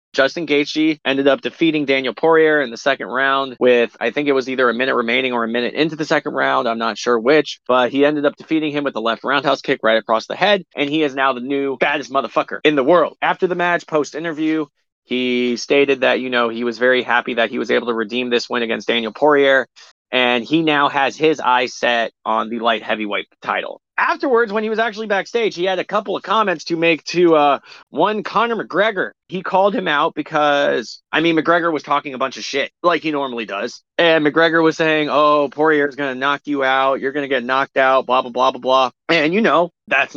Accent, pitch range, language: American, 130-170 Hz, English